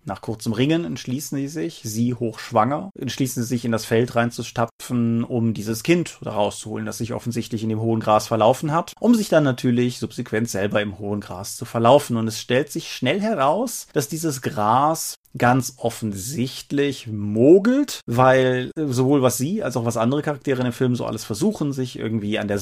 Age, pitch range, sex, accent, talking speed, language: 30-49, 115-145 Hz, male, German, 190 wpm, German